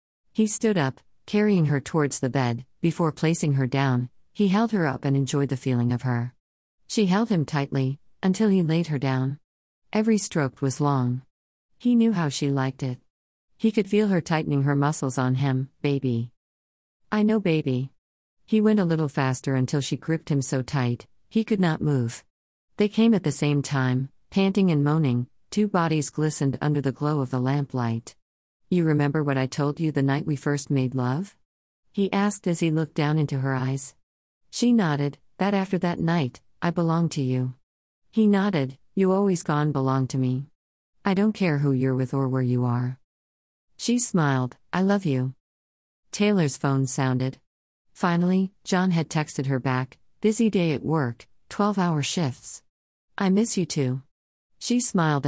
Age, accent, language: 50-69, American, English